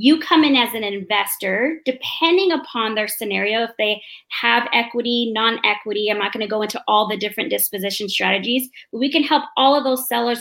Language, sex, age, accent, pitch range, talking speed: English, female, 20-39, American, 205-255 Hz, 195 wpm